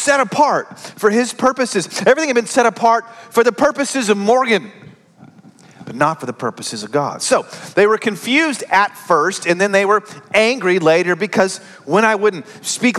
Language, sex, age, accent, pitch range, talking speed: English, male, 40-59, American, 160-215 Hz, 180 wpm